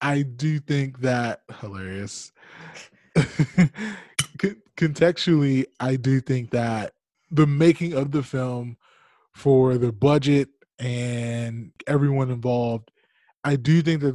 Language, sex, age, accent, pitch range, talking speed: English, male, 20-39, American, 125-155 Hz, 105 wpm